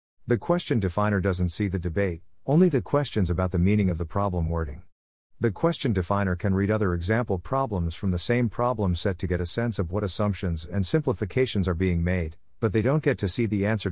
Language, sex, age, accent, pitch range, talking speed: English, male, 50-69, American, 90-110 Hz, 215 wpm